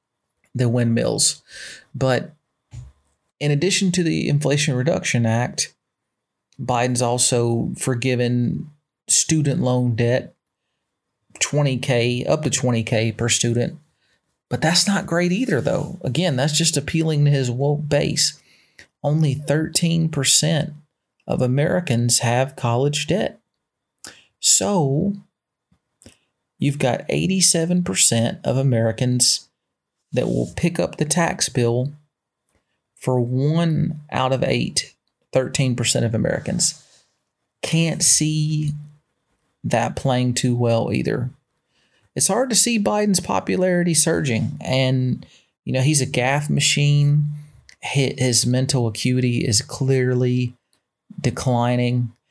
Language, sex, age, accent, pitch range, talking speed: English, male, 30-49, American, 125-155 Hz, 105 wpm